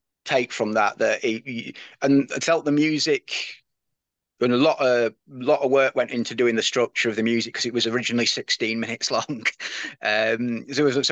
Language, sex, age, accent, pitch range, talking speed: English, male, 30-49, British, 110-125 Hz, 205 wpm